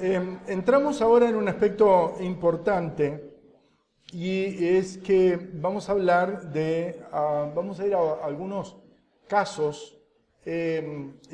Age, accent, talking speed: 50-69, Argentinian, 115 wpm